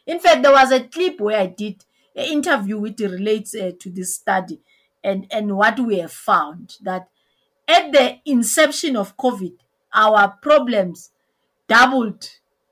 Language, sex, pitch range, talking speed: English, female, 205-275 Hz, 150 wpm